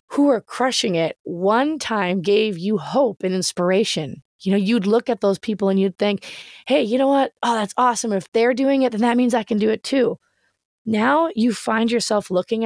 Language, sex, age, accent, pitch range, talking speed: English, female, 20-39, American, 195-255 Hz, 215 wpm